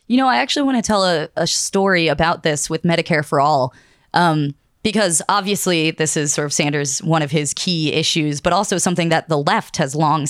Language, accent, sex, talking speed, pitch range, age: English, American, female, 215 wpm, 145-175 Hz, 20-39